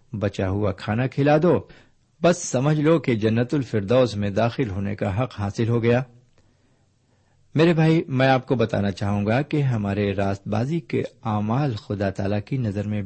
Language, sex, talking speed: Urdu, male, 175 wpm